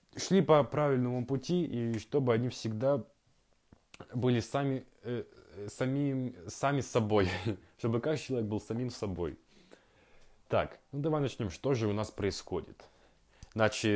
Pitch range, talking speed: 100-130 Hz, 120 wpm